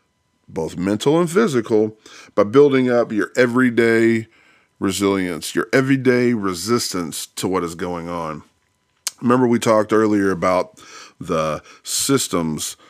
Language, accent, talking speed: English, American, 115 wpm